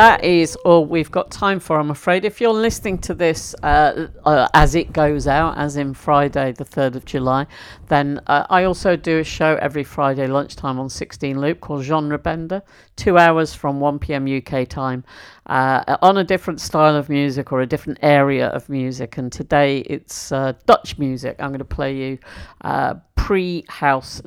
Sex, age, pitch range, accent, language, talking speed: female, 50-69, 130-160 Hz, British, English, 185 wpm